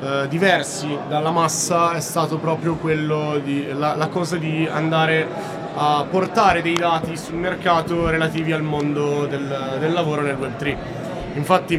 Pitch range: 150-175 Hz